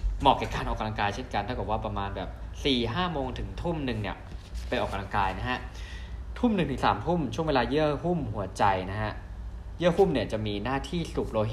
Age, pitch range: 20-39, 90-130 Hz